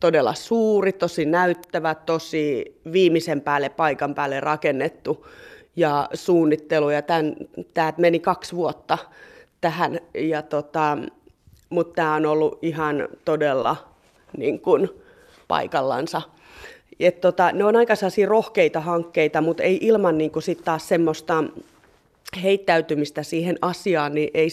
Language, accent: Finnish, native